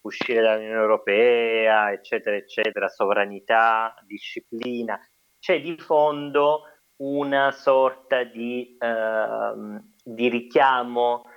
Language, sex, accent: Italian, male, native